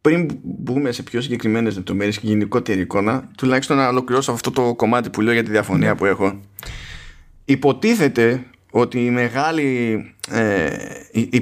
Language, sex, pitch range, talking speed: Greek, male, 100-140 Hz, 145 wpm